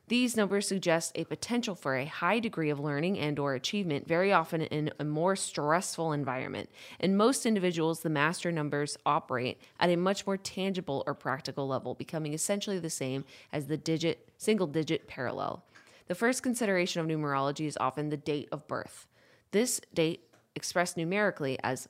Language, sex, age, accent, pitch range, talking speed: English, female, 20-39, American, 145-195 Hz, 170 wpm